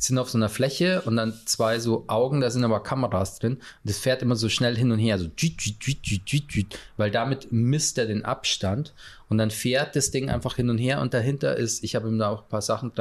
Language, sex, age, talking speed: German, male, 20-39, 230 wpm